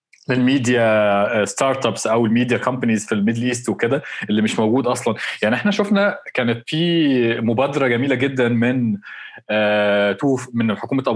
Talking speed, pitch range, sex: 140 wpm, 110-135 Hz, male